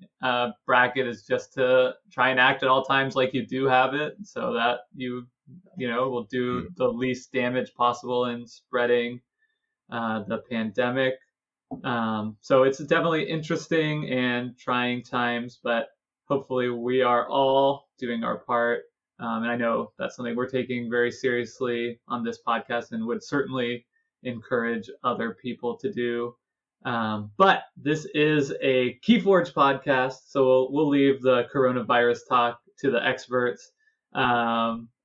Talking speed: 150 wpm